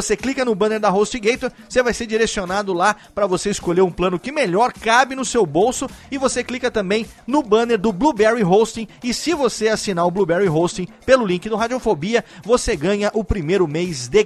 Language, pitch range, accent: Portuguese, 175-225 Hz, Brazilian